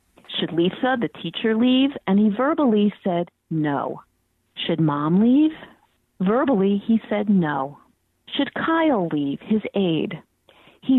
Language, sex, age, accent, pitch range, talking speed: English, female, 40-59, American, 185-255 Hz, 125 wpm